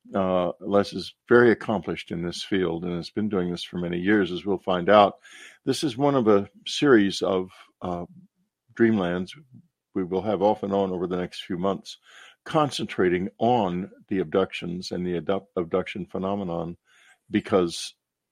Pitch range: 85-100 Hz